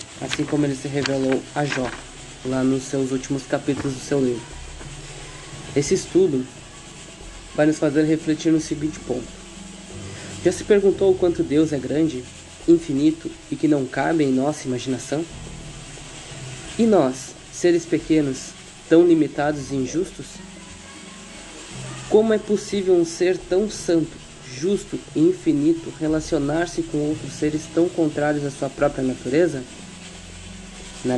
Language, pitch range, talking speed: Portuguese, 135-165 Hz, 135 wpm